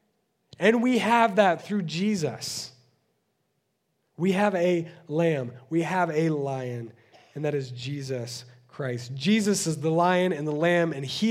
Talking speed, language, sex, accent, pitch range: 150 wpm, English, male, American, 140-200 Hz